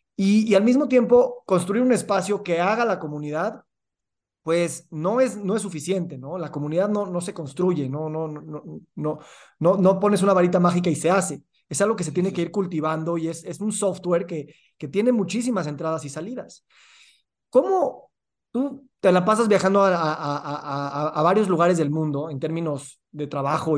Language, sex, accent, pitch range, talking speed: Spanish, male, Mexican, 150-200 Hz, 195 wpm